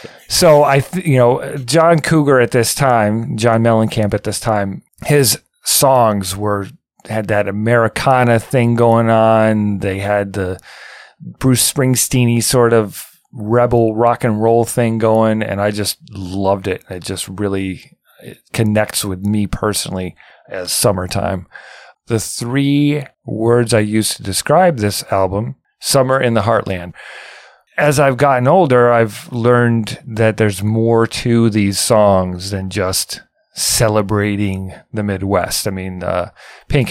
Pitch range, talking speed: 100-115 Hz, 140 wpm